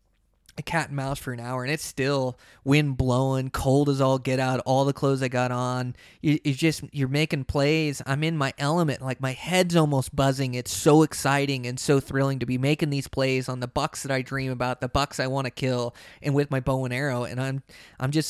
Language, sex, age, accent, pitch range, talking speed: English, male, 20-39, American, 130-155 Hz, 235 wpm